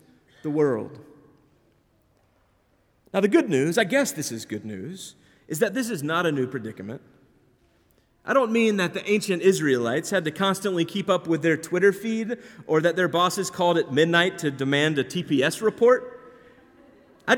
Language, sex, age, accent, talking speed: English, male, 40-59, American, 170 wpm